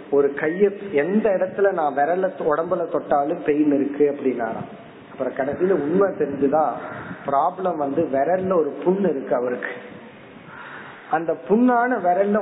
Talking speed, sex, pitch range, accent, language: 115 wpm, male, 150-220 Hz, native, Tamil